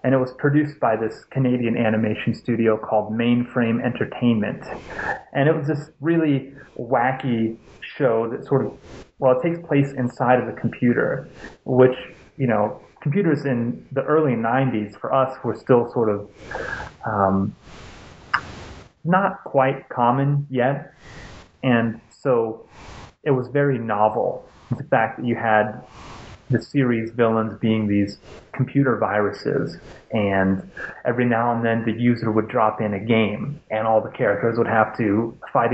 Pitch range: 110-130 Hz